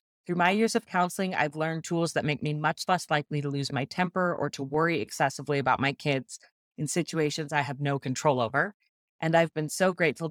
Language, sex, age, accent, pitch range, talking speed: English, female, 30-49, American, 145-180 Hz, 215 wpm